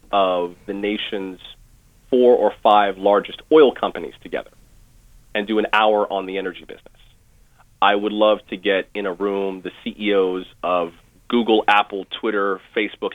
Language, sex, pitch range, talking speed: English, male, 100-120 Hz, 150 wpm